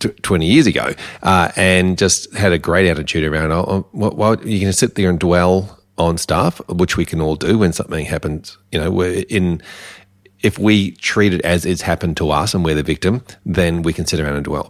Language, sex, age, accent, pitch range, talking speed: English, male, 40-59, Australian, 80-95 Hz, 215 wpm